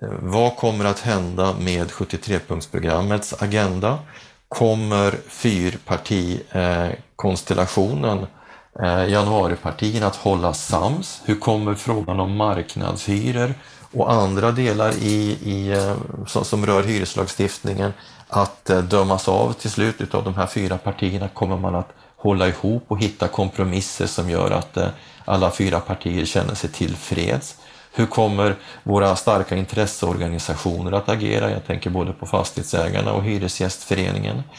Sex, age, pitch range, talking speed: male, 30-49, 95-105 Hz, 120 wpm